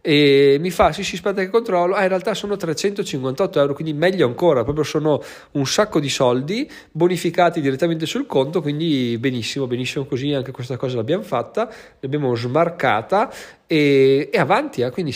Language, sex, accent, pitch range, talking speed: Italian, male, native, 125-165 Hz, 170 wpm